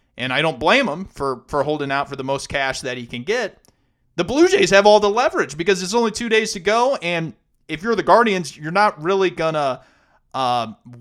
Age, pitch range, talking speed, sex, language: 30-49, 125-175 Hz, 230 wpm, male, English